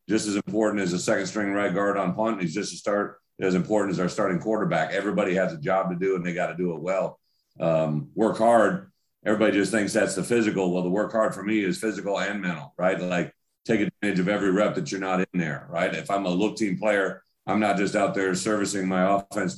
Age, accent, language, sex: 40-59, American, English, male